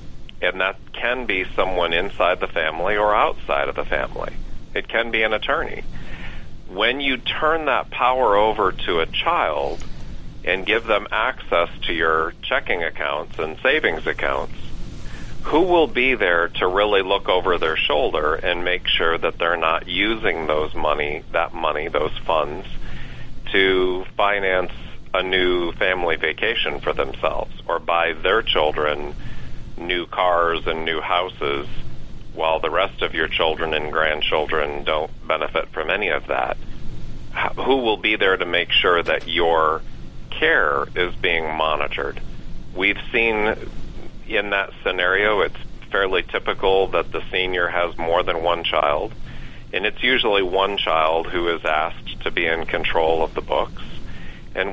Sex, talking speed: male, 150 wpm